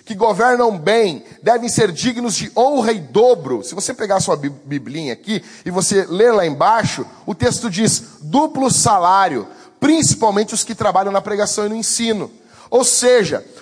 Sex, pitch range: male, 165-240 Hz